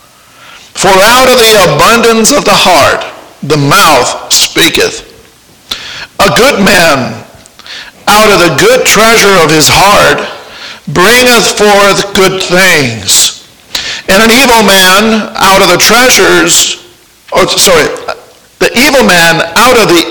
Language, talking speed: English, 120 wpm